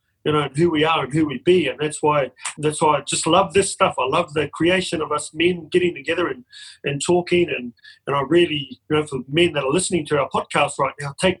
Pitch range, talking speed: 145-175 Hz, 255 wpm